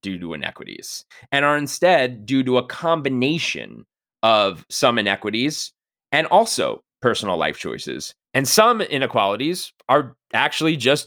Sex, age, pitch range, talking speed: male, 30-49, 105-160 Hz, 130 wpm